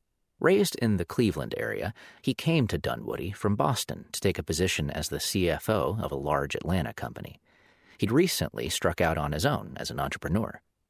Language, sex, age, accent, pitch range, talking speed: English, male, 40-59, American, 80-115 Hz, 180 wpm